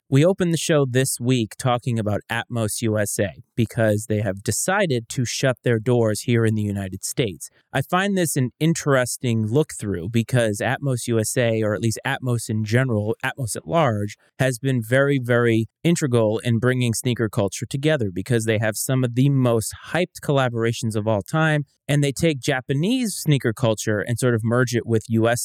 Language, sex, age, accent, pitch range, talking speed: English, male, 30-49, American, 110-135 Hz, 180 wpm